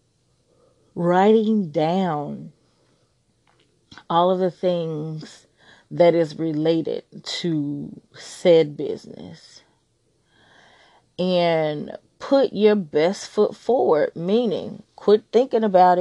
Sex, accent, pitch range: female, American, 160-210 Hz